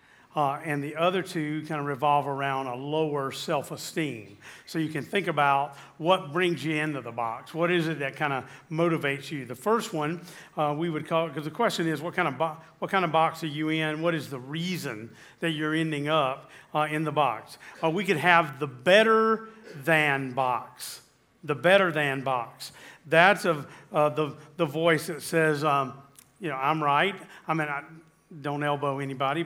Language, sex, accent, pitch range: English, male, American, 145-170 Hz